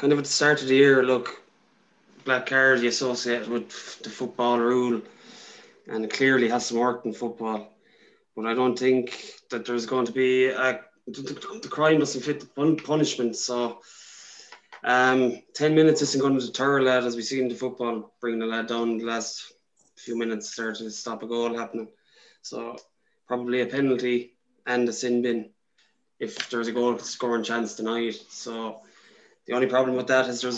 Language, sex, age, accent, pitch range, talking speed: English, male, 20-39, Irish, 120-135 Hz, 185 wpm